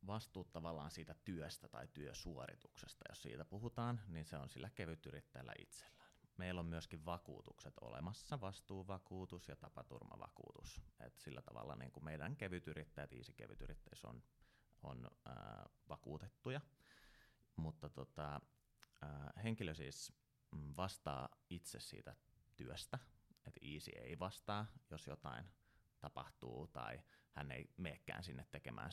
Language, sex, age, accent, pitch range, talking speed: Finnish, male, 30-49, native, 75-95 Hz, 120 wpm